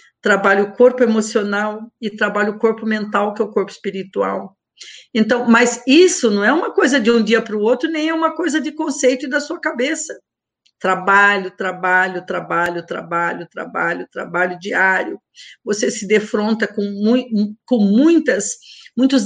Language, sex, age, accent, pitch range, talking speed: Portuguese, female, 50-69, Brazilian, 210-280 Hz, 160 wpm